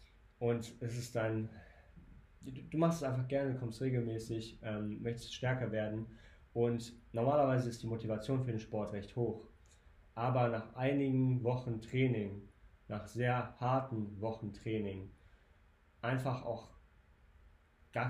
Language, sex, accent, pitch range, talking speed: German, male, German, 95-120 Hz, 125 wpm